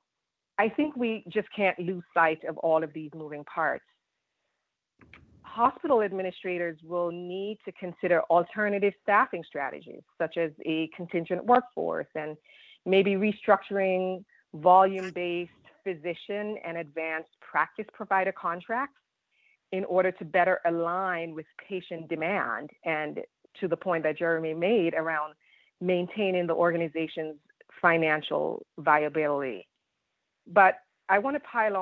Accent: American